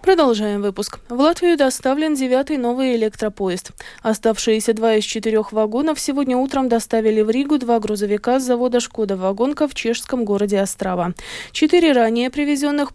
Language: Russian